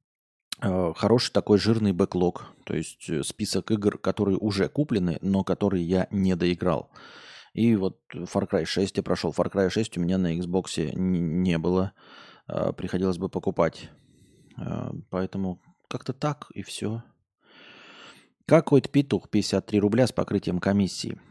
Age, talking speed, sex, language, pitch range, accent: 20-39, 130 wpm, male, Russian, 95-115 Hz, native